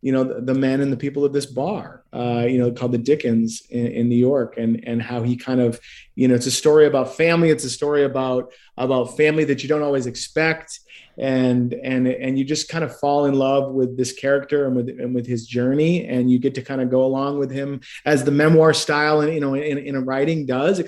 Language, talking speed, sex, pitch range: English, 245 wpm, male, 125-145 Hz